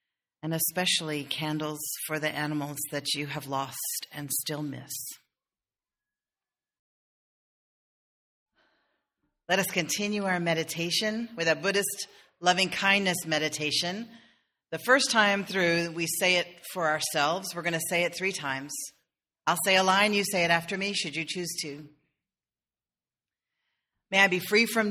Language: English